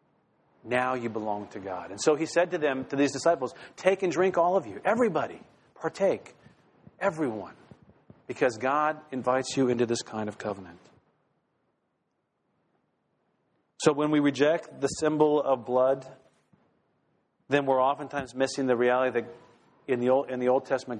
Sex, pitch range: male, 115-150 Hz